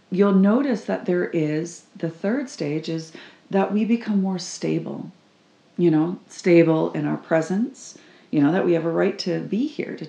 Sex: female